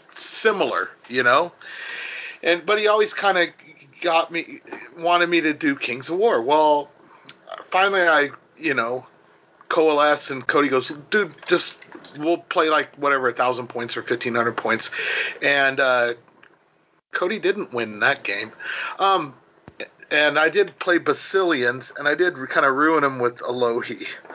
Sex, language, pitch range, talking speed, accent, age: male, English, 125-165 Hz, 155 wpm, American, 40-59